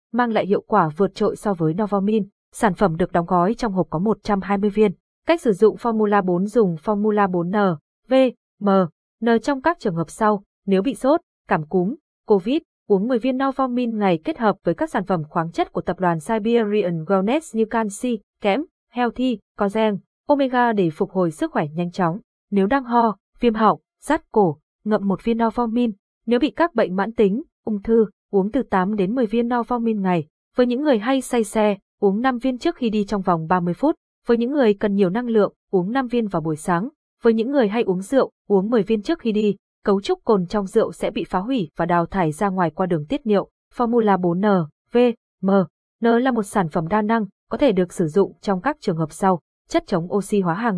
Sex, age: female, 20-39